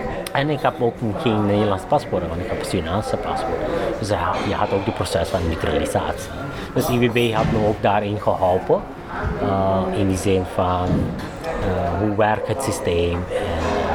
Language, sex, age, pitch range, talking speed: English, male, 30-49, 95-120 Hz, 170 wpm